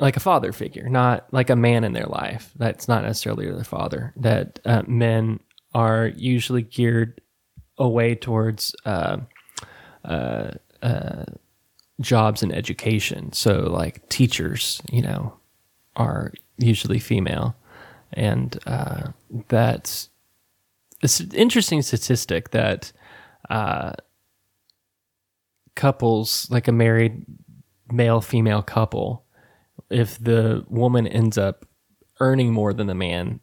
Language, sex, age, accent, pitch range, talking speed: English, male, 20-39, American, 110-130 Hz, 110 wpm